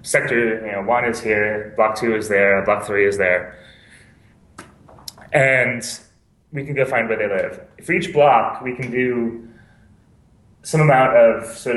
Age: 20-39